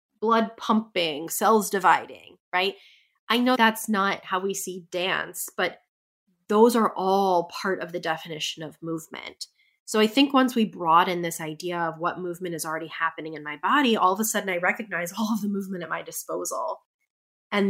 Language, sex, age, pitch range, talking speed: English, female, 20-39, 175-225 Hz, 185 wpm